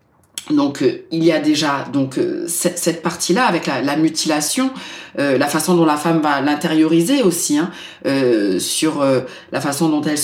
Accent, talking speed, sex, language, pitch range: French, 170 wpm, female, French, 155-190 Hz